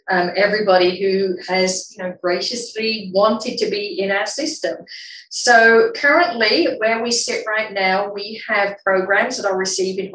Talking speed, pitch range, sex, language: 140 wpm, 185-210 Hz, female, English